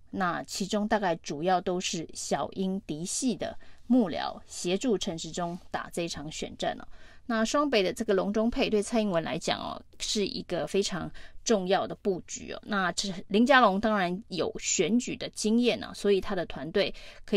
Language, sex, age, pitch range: Chinese, female, 20-39, 185-225 Hz